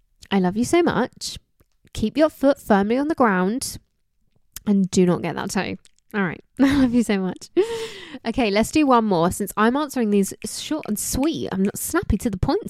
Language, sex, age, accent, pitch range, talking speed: English, female, 20-39, British, 190-270 Hz, 205 wpm